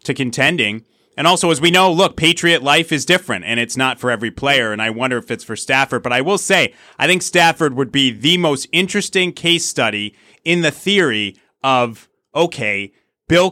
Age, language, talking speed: 30-49, English, 200 wpm